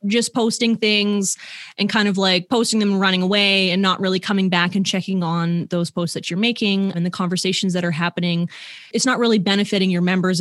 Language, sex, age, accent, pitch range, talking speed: English, female, 20-39, American, 180-215 Hz, 215 wpm